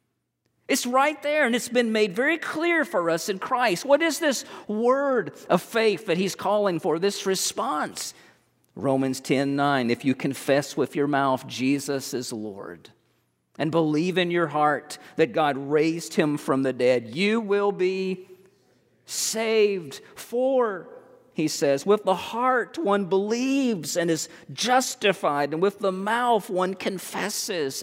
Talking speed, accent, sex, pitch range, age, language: 150 wpm, American, male, 150-215 Hz, 50-69, English